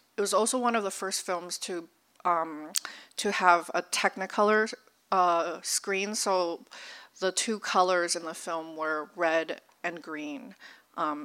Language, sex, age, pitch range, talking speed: English, female, 40-59, 170-205 Hz, 150 wpm